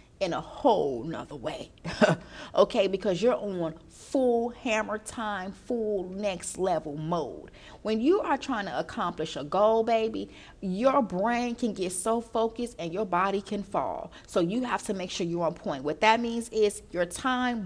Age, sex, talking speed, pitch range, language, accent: 40-59, female, 175 wpm, 180-225 Hz, English, American